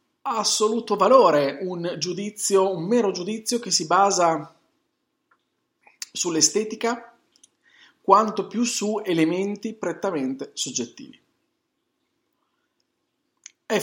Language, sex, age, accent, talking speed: Italian, male, 40-59, native, 80 wpm